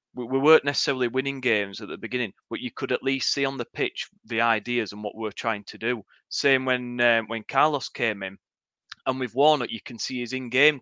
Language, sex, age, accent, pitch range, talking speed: English, male, 30-49, British, 120-145 Hz, 225 wpm